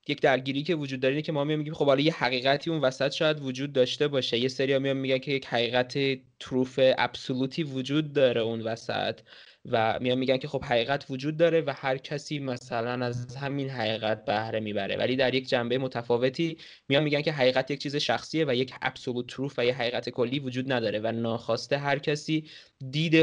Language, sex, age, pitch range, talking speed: Persian, male, 20-39, 120-145 Hz, 195 wpm